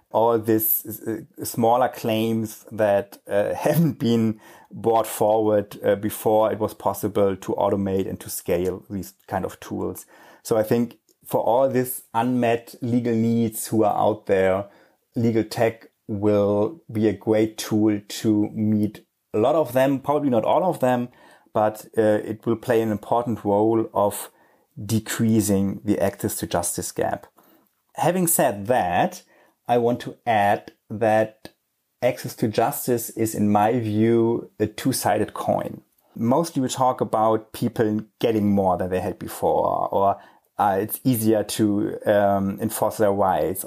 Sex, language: male, English